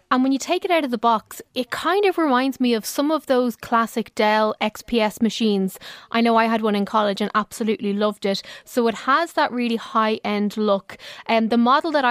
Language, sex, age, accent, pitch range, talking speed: English, female, 20-39, Irish, 210-255 Hz, 225 wpm